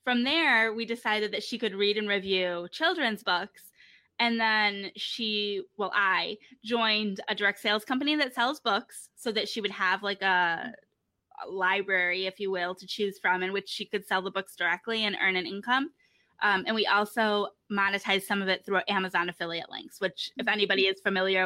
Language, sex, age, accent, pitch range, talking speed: English, female, 20-39, American, 190-230 Hz, 195 wpm